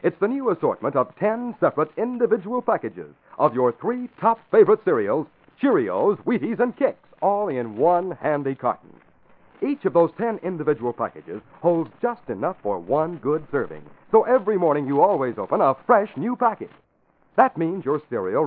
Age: 60-79